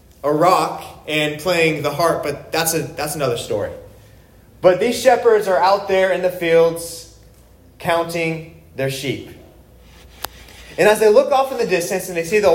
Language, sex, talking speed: English, male, 170 wpm